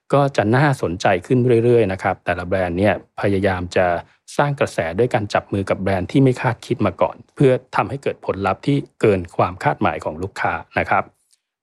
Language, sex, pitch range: Thai, male, 100-130 Hz